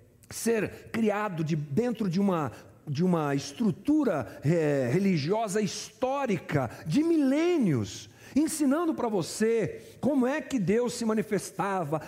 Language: Portuguese